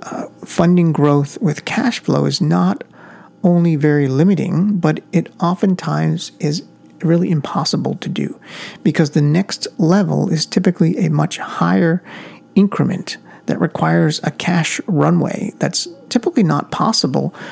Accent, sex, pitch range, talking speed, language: American, male, 150-190 Hz, 130 wpm, English